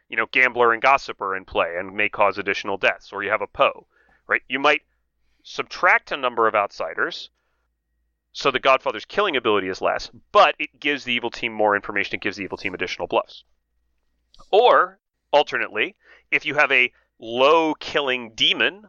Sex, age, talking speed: male, 30-49, 175 wpm